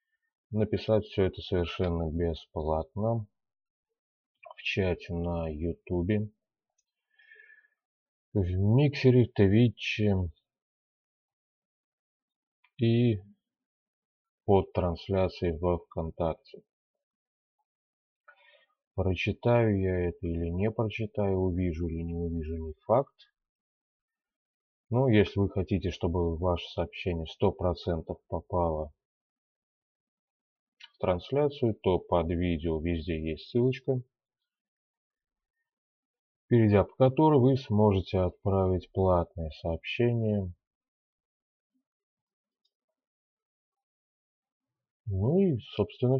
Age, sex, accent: 30-49, male, native